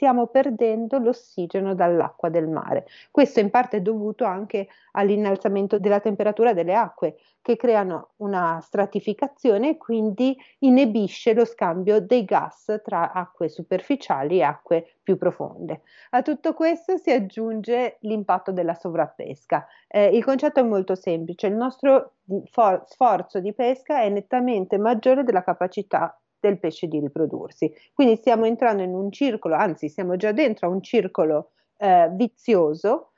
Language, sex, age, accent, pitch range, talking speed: Italian, female, 40-59, native, 195-255 Hz, 140 wpm